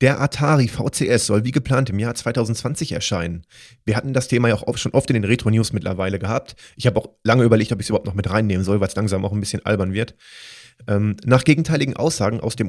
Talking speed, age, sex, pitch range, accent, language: 235 wpm, 30-49, male, 105-130 Hz, German, German